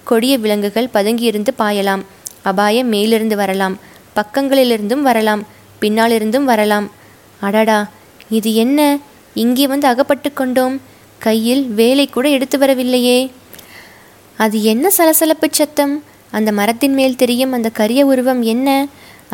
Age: 20-39